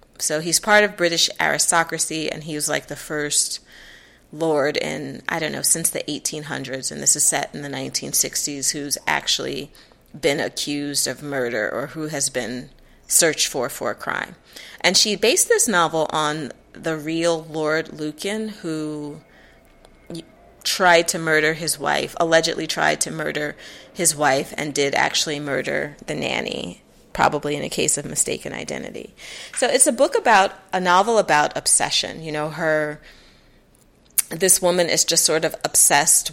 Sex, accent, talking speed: female, American, 160 wpm